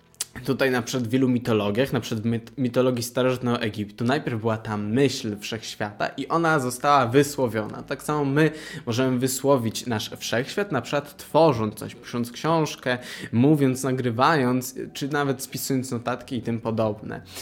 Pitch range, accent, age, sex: 115-145 Hz, native, 20-39, male